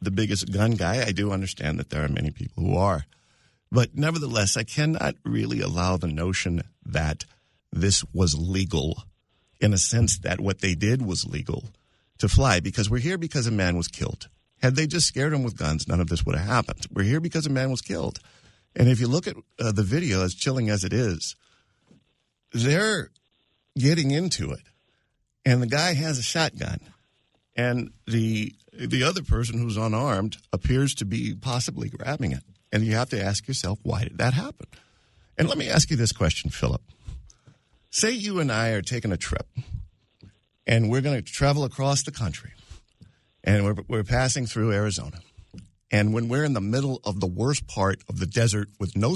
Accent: American